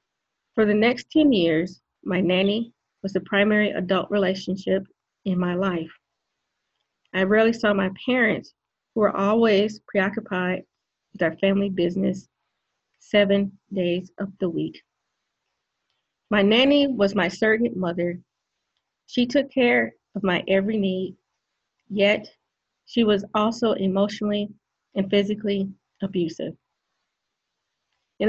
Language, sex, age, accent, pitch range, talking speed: English, female, 30-49, American, 190-215 Hz, 115 wpm